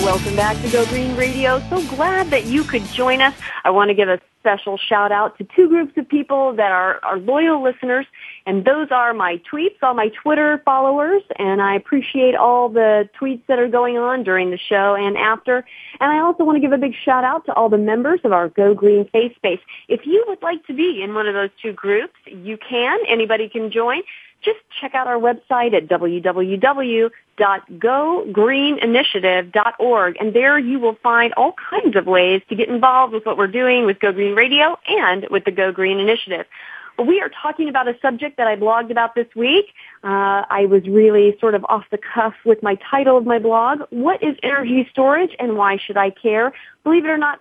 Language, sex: English, female